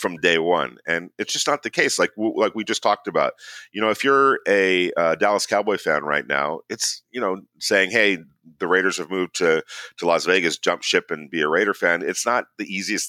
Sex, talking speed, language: male, 230 wpm, English